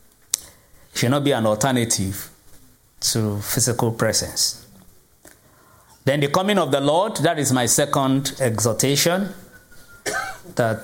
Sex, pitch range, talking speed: male, 110-140 Hz, 110 wpm